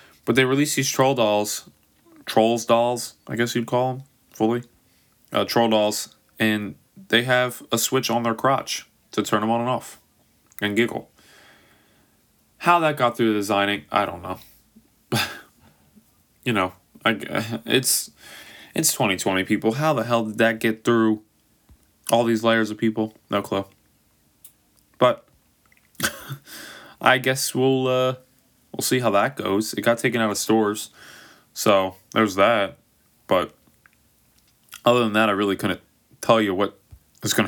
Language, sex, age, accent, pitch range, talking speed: English, male, 20-39, American, 95-120 Hz, 150 wpm